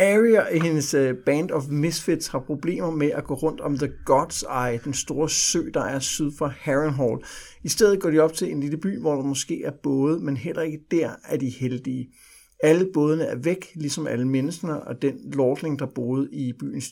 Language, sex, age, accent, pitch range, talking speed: Danish, male, 60-79, native, 135-160 Hz, 210 wpm